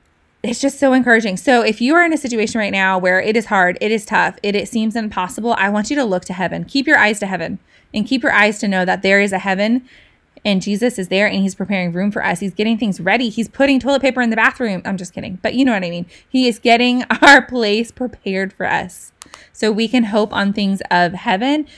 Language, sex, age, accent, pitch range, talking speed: English, female, 20-39, American, 195-240 Hz, 255 wpm